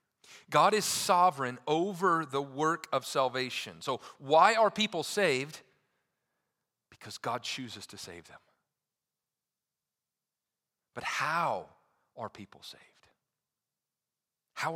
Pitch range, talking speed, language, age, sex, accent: 125-160 Hz, 100 wpm, English, 40-59, male, American